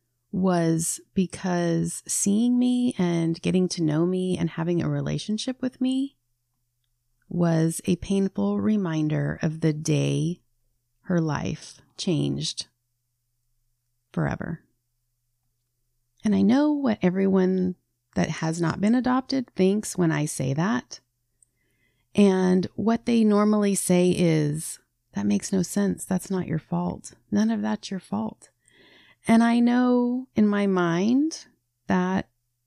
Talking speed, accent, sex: 125 wpm, American, female